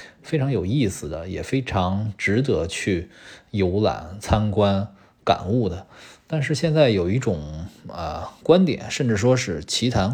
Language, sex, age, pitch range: Chinese, male, 20-39, 95-135 Hz